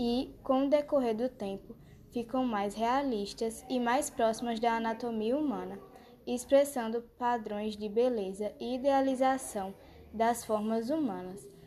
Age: 10-29